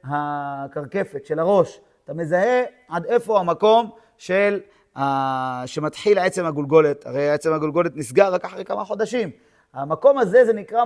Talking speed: 140 wpm